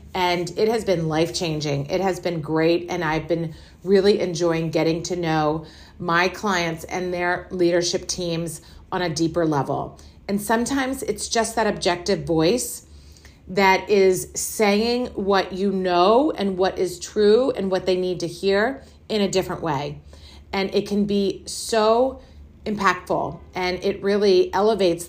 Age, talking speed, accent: 40-59, 155 wpm, American